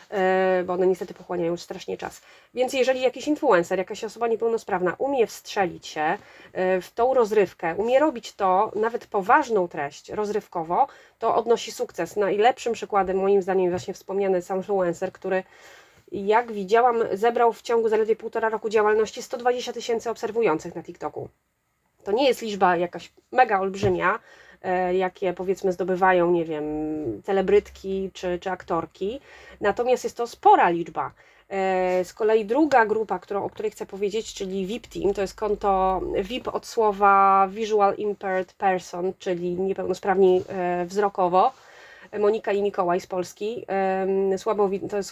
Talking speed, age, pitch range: 140 wpm, 30-49, 185-225 Hz